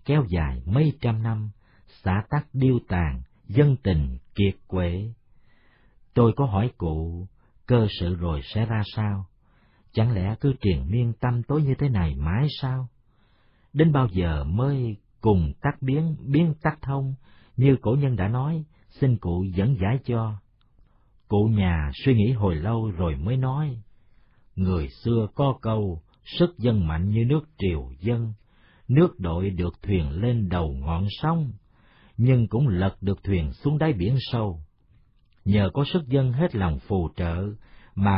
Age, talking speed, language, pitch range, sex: 50-69, 160 wpm, Vietnamese, 95-130 Hz, male